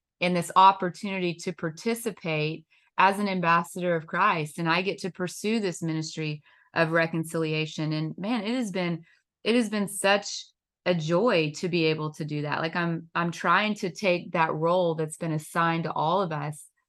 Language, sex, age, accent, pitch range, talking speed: English, female, 30-49, American, 155-180 Hz, 180 wpm